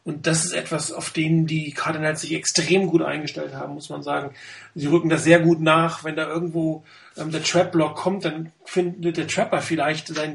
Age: 40-59